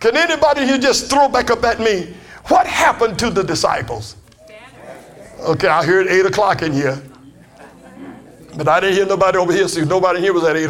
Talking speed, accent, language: 195 wpm, American, English